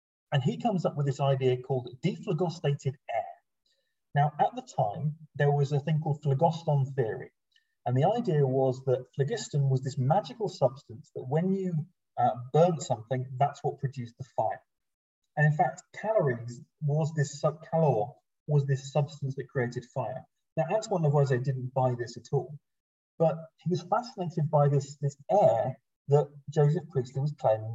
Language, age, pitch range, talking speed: English, 30-49, 130-160 Hz, 165 wpm